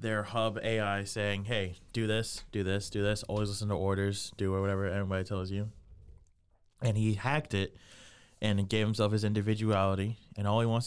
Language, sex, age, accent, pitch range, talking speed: English, male, 20-39, American, 100-115 Hz, 180 wpm